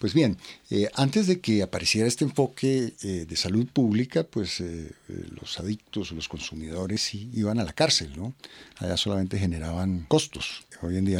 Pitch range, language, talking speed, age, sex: 90-110 Hz, Spanish, 170 wpm, 50-69, male